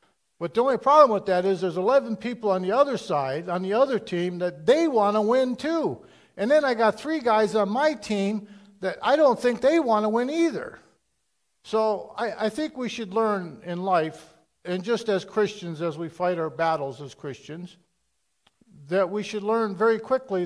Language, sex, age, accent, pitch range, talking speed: English, male, 50-69, American, 170-215 Hz, 200 wpm